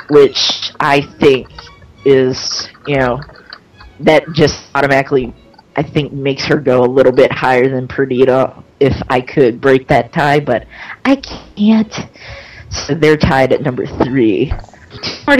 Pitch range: 130-165 Hz